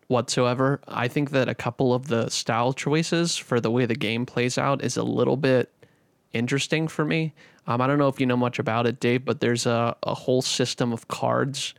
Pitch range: 120-145 Hz